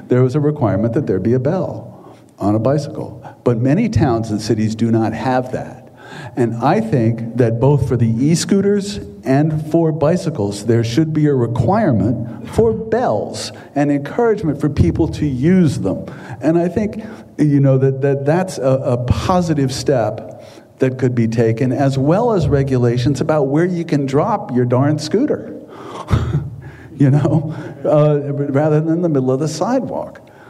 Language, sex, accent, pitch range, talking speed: English, male, American, 120-155 Hz, 165 wpm